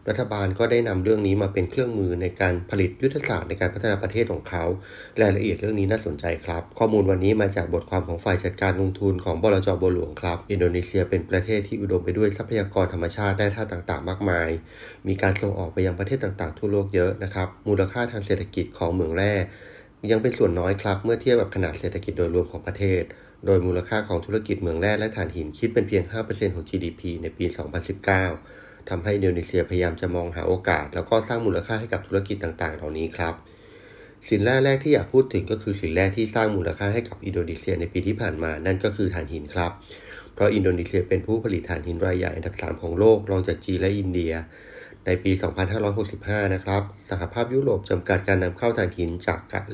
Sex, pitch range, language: male, 90-105 Hz, Thai